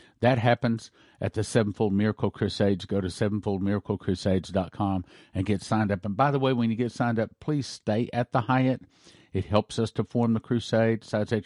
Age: 50-69